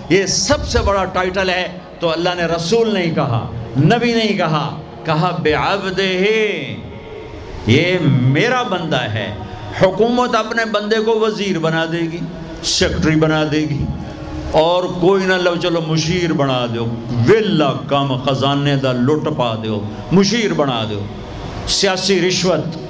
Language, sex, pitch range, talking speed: English, male, 145-195 Hz, 145 wpm